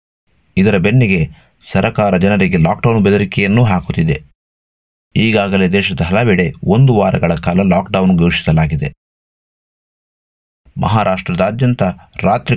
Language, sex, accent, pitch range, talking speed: Kannada, male, native, 85-110 Hz, 80 wpm